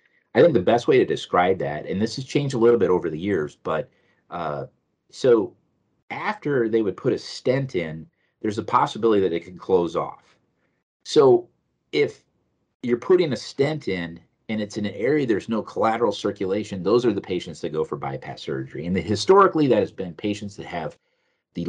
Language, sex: English, male